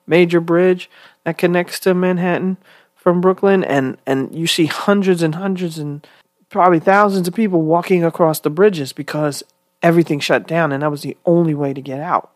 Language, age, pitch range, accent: English, 40-59, 140-180 Hz, American